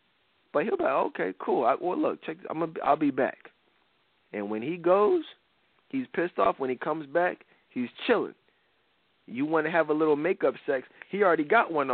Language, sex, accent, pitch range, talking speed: English, male, American, 135-175 Hz, 205 wpm